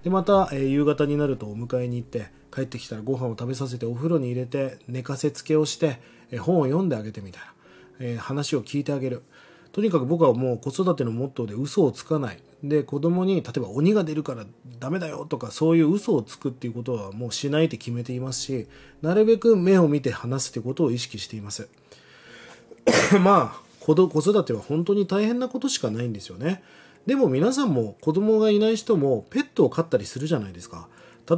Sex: male